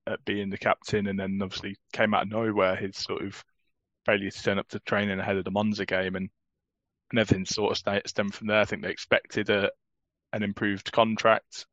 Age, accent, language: 20-39, British, English